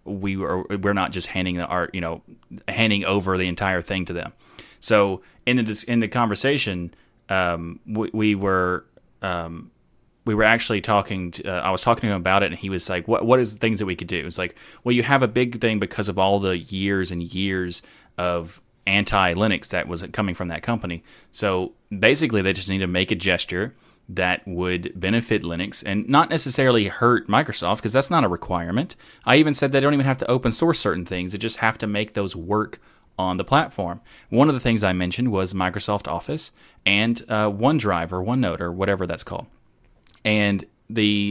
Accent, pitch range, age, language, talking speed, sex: American, 95-115 Hz, 30-49, English, 210 wpm, male